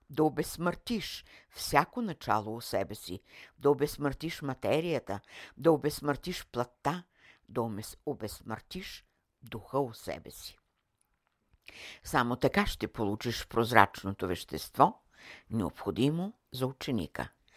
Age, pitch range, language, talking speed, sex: 60-79, 115-155 Hz, Bulgarian, 100 wpm, female